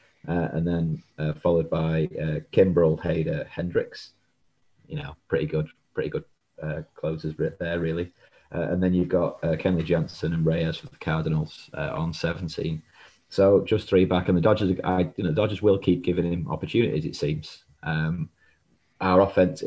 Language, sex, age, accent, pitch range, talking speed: English, male, 30-49, British, 80-95 Hz, 175 wpm